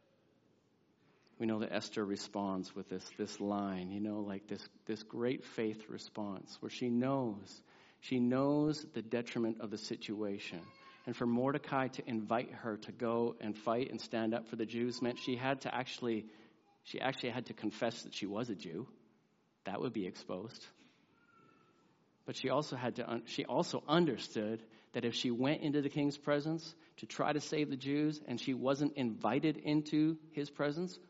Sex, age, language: male, 40-59, English